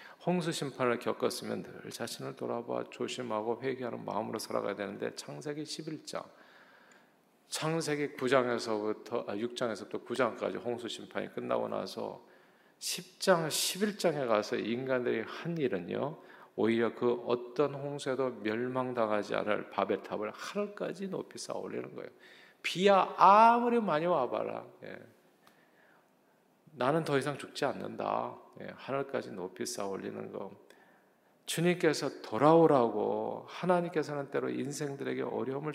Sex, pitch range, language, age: male, 110-145 Hz, Korean, 40-59